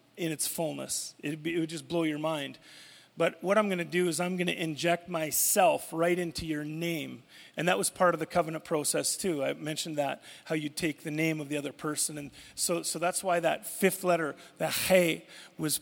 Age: 30-49